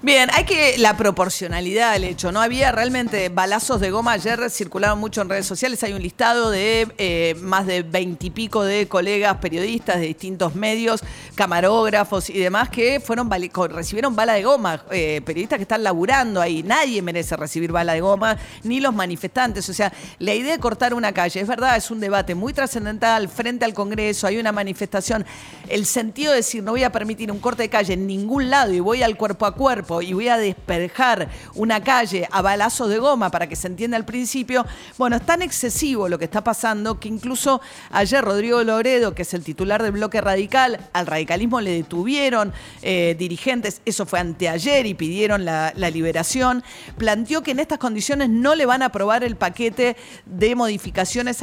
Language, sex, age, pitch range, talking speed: Spanish, female, 40-59, 190-240 Hz, 190 wpm